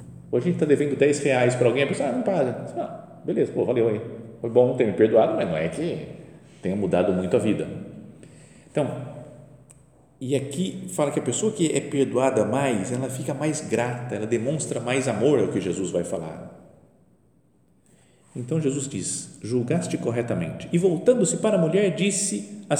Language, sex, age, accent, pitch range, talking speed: Portuguese, male, 50-69, Brazilian, 115-155 Hz, 185 wpm